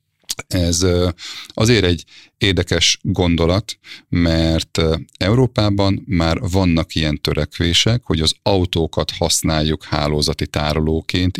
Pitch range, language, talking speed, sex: 80-100 Hz, Hungarian, 90 wpm, male